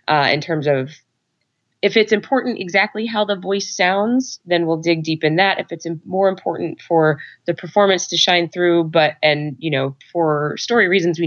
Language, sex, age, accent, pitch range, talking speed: English, female, 20-39, American, 150-185 Hz, 190 wpm